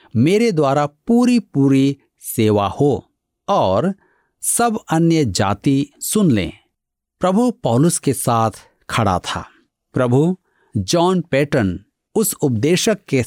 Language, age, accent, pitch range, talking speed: Hindi, 50-69, native, 105-170 Hz, 110 wpm